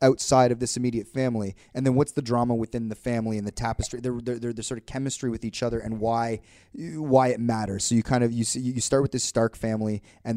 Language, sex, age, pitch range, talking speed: English, male, 30-49, 110-125 Hz, 250 wpm